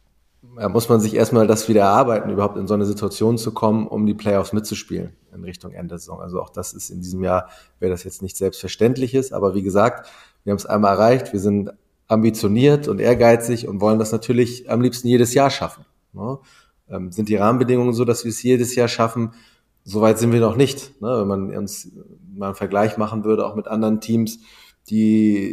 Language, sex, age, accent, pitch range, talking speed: German, male, 30-49, German, 100-115 Hz, 210 wpm